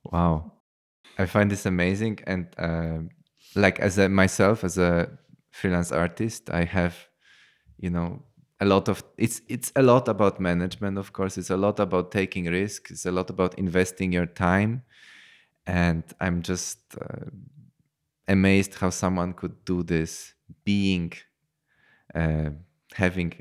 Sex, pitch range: male, 85-95 Hz